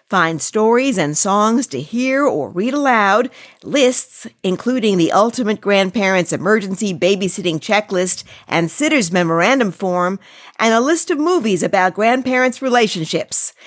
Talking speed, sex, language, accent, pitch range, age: 125 wpm, female, English, American, 180-255 Hz, 50-69